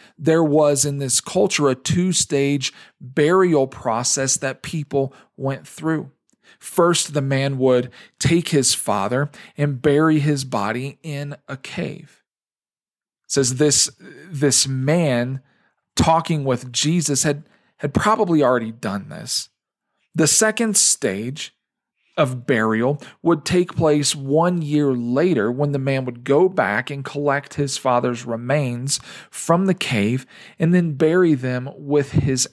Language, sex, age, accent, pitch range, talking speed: English, male, 40-59, American, 130-160 Hz, 135 wpm